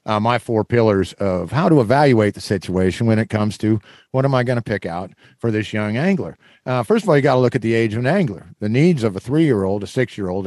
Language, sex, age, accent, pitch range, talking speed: English, male, 50-69, American, 105-130 Hz, 265 wpm